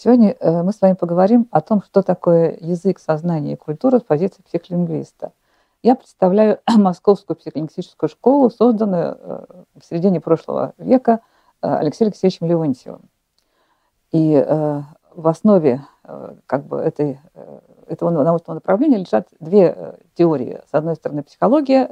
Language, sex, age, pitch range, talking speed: Russian, female, 50-69, 165-230 Hz, 125 wpm